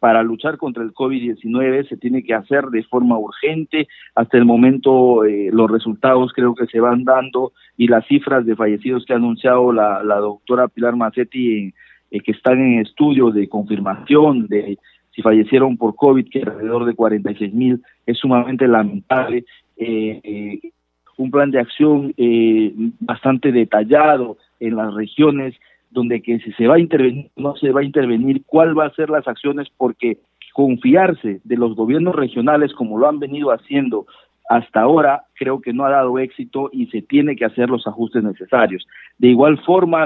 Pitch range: 115-140 Hz